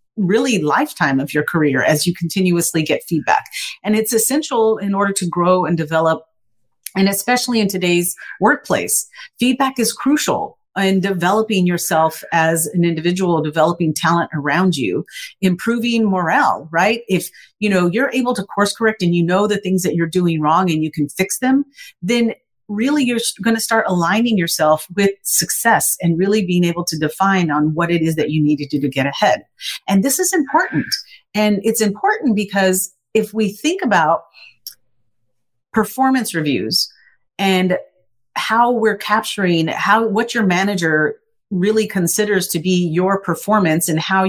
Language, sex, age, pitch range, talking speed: English, female, 40-59, 165-220 Hz, 165 wpm